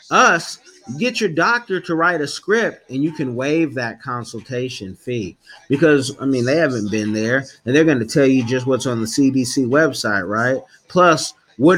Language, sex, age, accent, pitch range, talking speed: English, male, 30-49, American, 125-160 Hz, 190 wpm